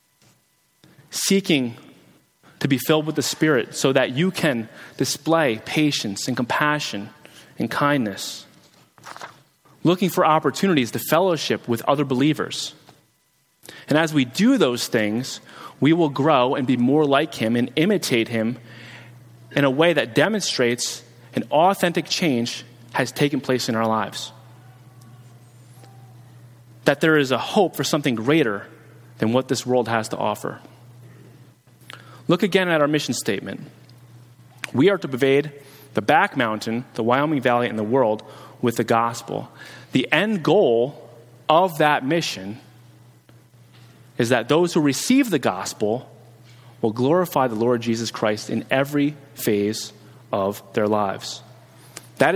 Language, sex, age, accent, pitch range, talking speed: English, male, 30-49, American, 120-150 Hz, 135 wpm